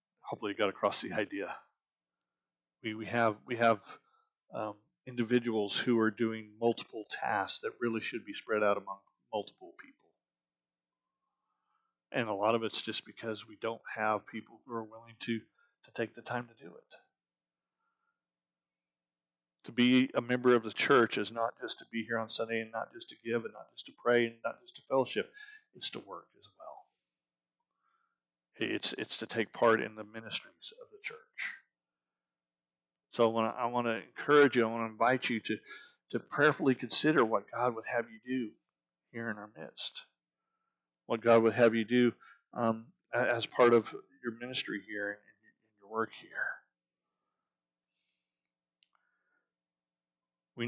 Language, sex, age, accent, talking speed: English, male, 40-59, American, 165 wpm